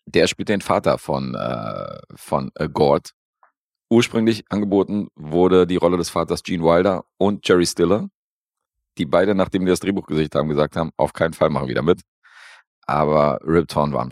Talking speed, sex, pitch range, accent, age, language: 175 wpm, male, 75-95 Hz, German, 40-59, German